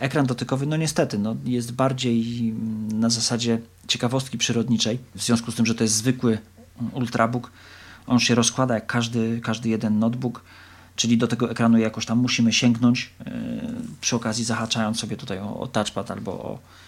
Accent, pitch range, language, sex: native, 100-120 Hz, Polish, male